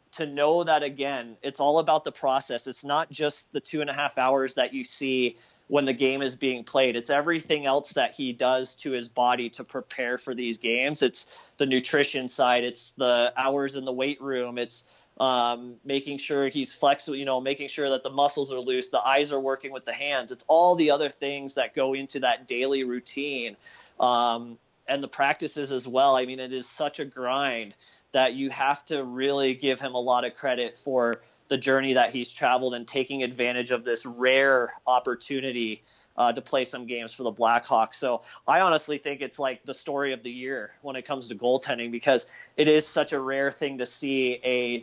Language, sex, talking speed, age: English, male, 210 wpm, 30-49